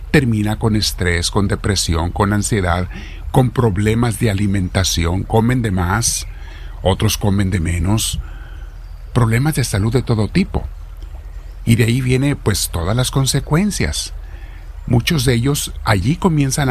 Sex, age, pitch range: male, 50-69, 85-120 Hz